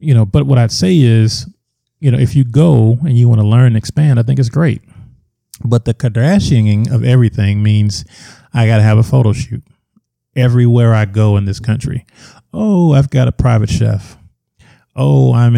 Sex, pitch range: male, 105-125 Hz